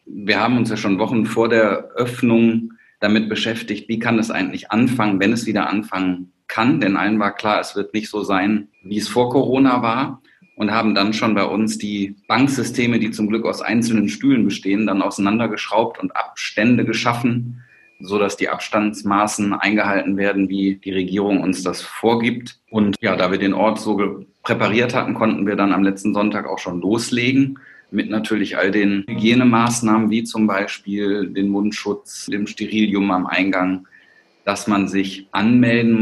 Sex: male